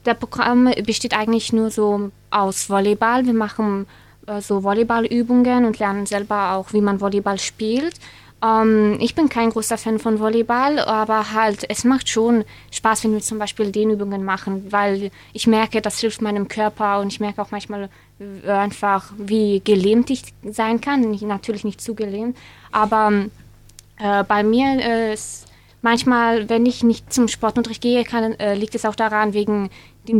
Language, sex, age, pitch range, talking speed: German, female, 20-39, 205-230 Hz, 170 wpm